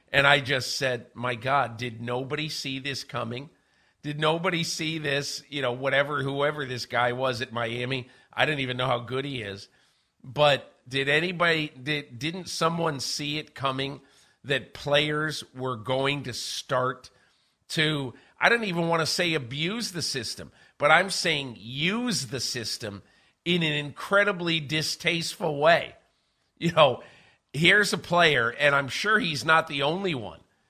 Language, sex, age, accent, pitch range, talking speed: English, male, 50-69, American, 125-160 Hz, 155 wpm